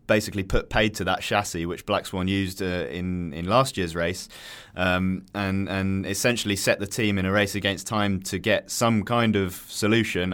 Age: 20-39